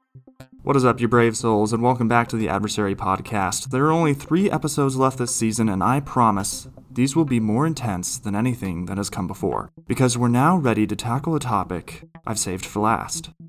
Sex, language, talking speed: male, English, 210 wpm